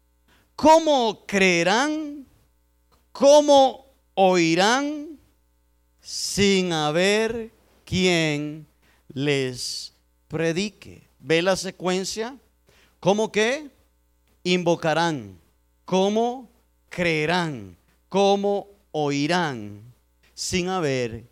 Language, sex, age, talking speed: Spanish, male, 40-59, 60 wpm